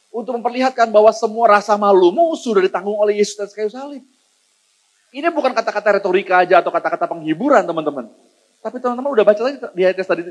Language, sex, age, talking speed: Indonesian, male, 30-49, 175 wpm